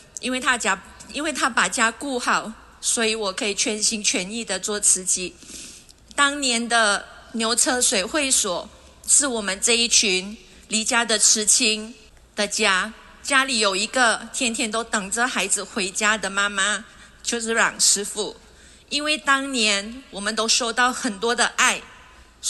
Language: Chinese